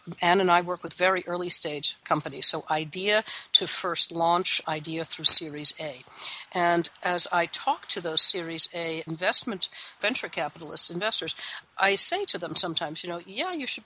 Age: 60-79